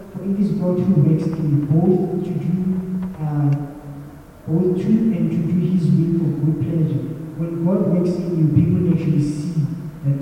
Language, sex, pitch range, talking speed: English, male, 145-175 Hz, 160 wpm